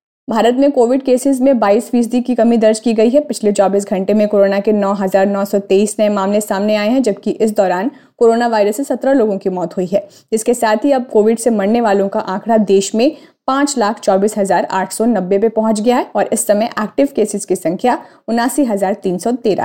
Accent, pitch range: native, 200-245 Hz